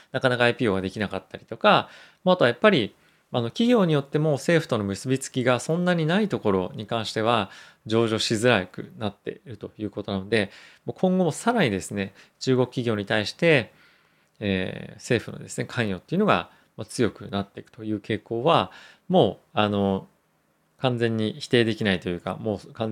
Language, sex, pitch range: Japanese, male, 105-145 Hz